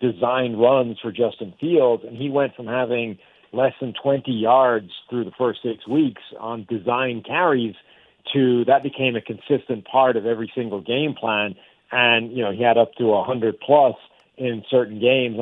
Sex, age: male, 50-69